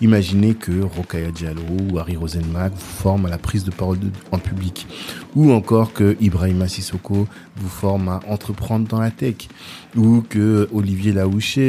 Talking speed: 170 wpm